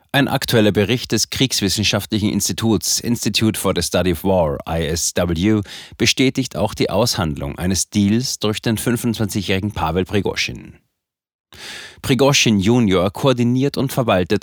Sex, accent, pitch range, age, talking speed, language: male, German, 95-115 Hz, 30-49, 120 wpm, German